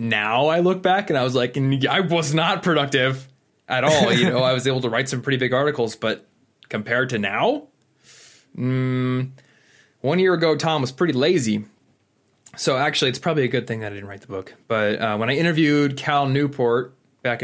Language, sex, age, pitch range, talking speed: English, male, 20-39, 110-140 Hz, 200 wpm